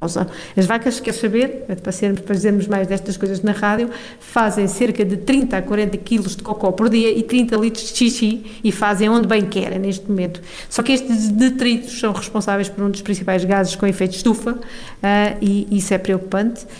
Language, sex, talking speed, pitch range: Portuguese, female, 200 wpm, 195-220 Hz